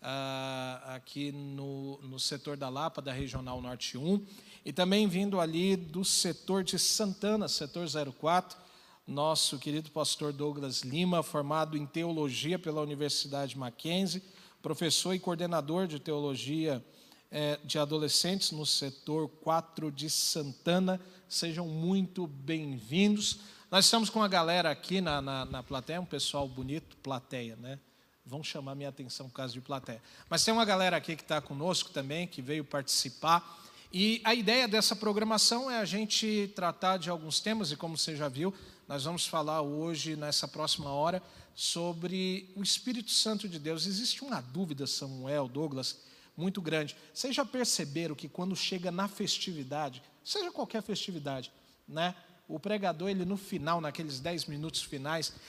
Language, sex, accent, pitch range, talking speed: Portuguese, male, Brazilian, 145-190 Hz, 150 wpm